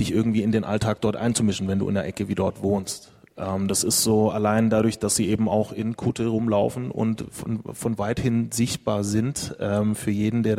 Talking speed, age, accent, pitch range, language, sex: 215 wpm, 30-49, German, 105-120 Hz, German, male